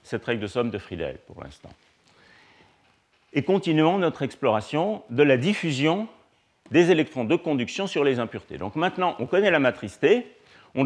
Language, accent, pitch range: French, French, 110-155 Hz